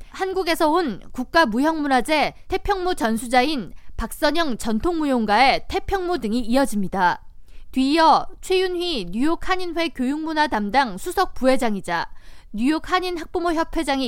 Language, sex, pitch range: Korean, female, 250-350 Hz